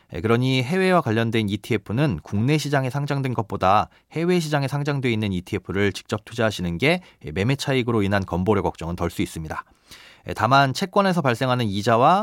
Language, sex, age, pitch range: Korean, male, 30-49, 100-145 Hz